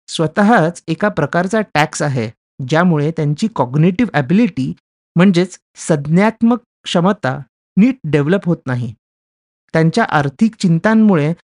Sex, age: male, 30-49